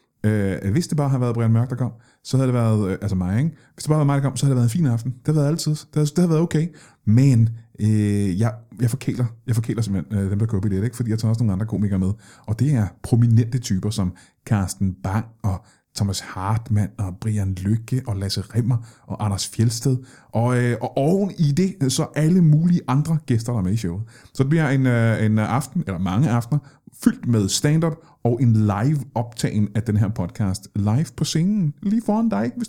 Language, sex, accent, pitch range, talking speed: Danish, male, native, 105-140 Hz, 230 wpm